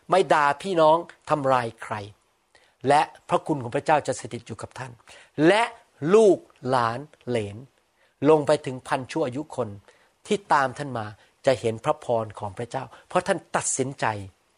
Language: Thai